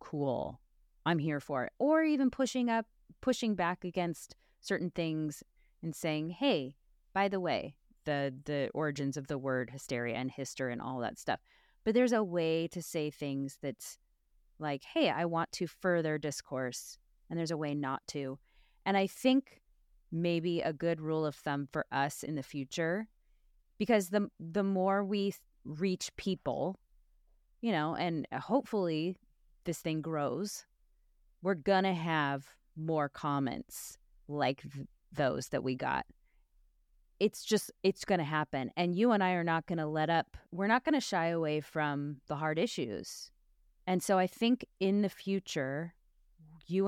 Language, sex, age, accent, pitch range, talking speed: English, female, 30-49, American, 150-195 Hz, 165 wpm